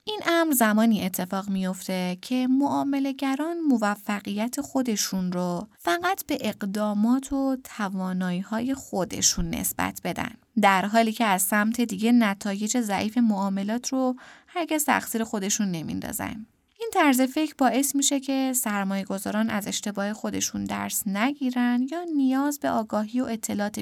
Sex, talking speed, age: female, 135 wpm, 20-39